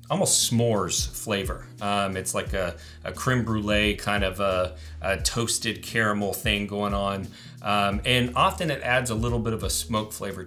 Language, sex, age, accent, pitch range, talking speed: English, male, 30-49, American, 100-125 Hz, 180 wpm